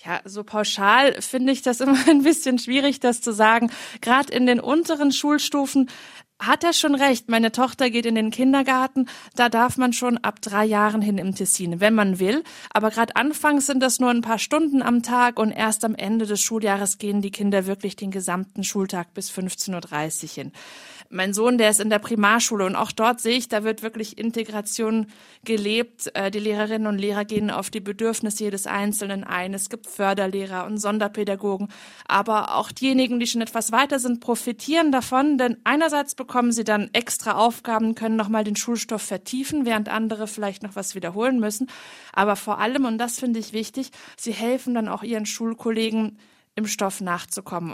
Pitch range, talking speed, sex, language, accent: 205-245 Hz, 185 wpm, female, German, German